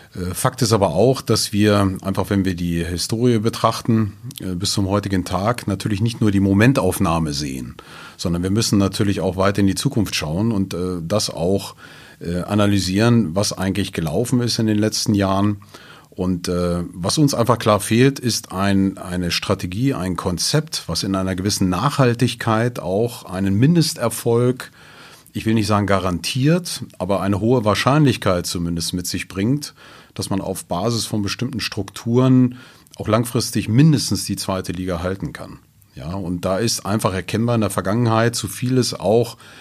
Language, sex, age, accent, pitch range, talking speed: German, male, 40-59, German, 95-120 Hz, 155 wpm